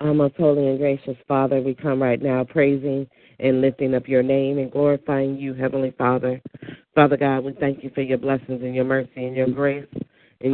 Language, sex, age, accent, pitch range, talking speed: English, female, 40-59, American, 125-140 Hz, 200 wpm